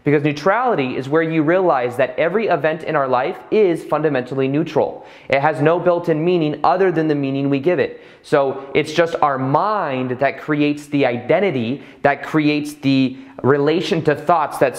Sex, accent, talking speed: male, American, 180 wpm